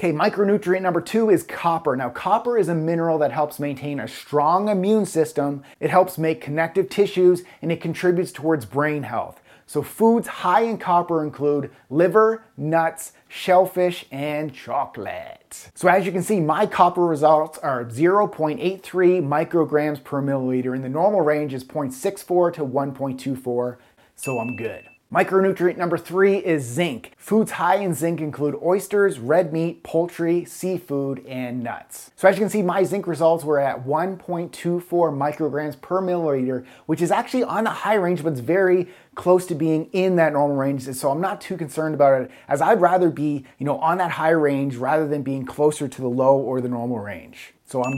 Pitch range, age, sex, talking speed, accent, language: 145-185 Hz, 30-49, male, 175 wpm, American, English